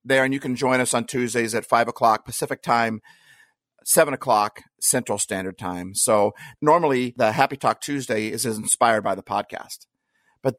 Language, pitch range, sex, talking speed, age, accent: English, 120-155 Hz, male, 170 wpm, 50-69, American